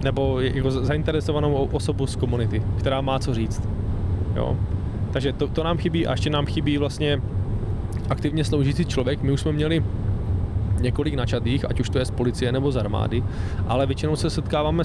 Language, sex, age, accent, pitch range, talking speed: Czech, male, 20-39, native, 100-130 Hz, 175 wpm